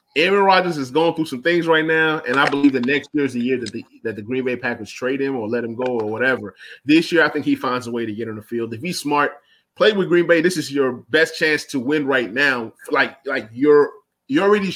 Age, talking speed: 20-39, 275 wpm